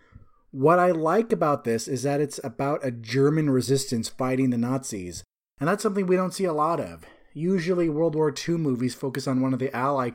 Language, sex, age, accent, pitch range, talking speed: English, male, 30-49, American, 130-175 Hz, 205 wpm